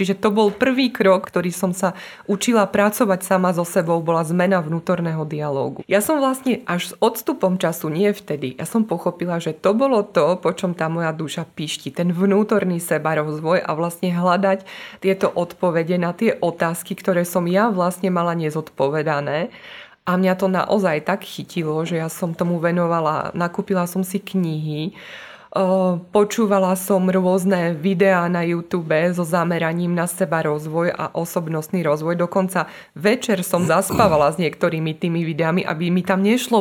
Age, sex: 20-39, female